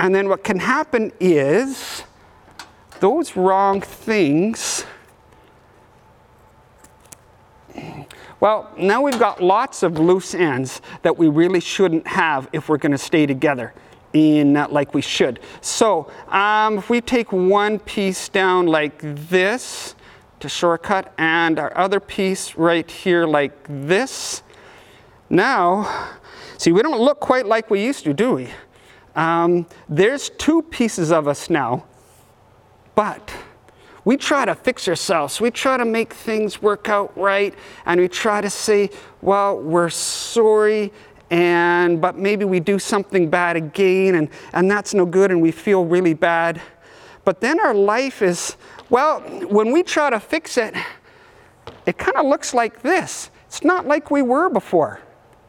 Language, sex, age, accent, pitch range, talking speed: English, male, 40-59, American, 170-230 Hz, 145 wpm